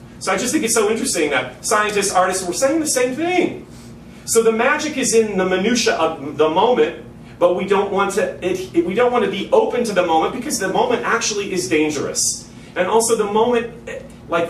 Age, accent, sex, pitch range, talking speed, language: 40-59, American, male, 130-190 Hz, 215 wpm, English